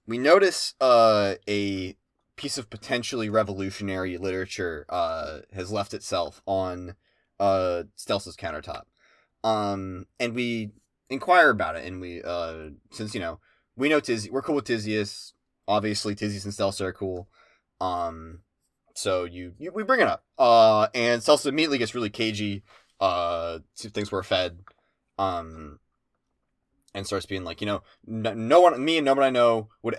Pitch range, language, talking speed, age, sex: 95-125 Hz, English, 155 wpm, 20-39, male